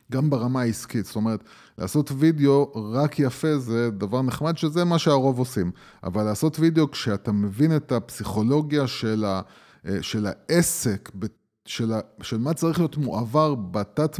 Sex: male